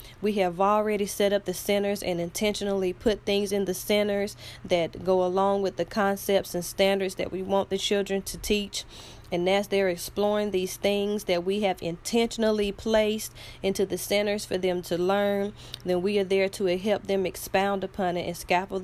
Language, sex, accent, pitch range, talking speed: English, female, American, 180-205 Hz, 190 wpm